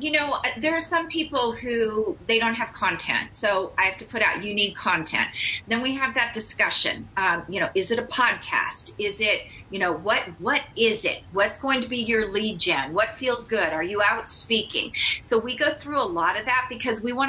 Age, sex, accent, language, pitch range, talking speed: 40-59, female, American, English, 190-245 Hz, 225 wpm